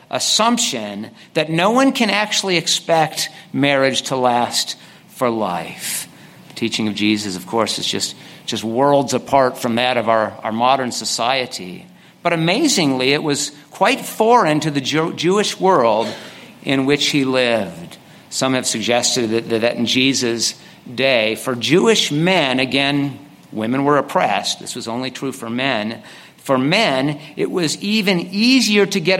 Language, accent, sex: English, American, male